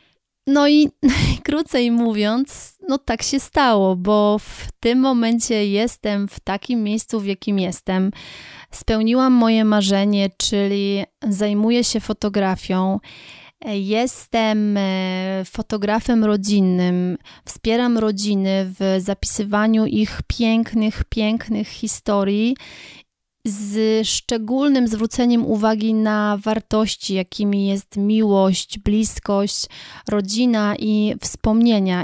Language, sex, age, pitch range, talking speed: Polish, female, 30-49, 205-235 Hz, 95 wpm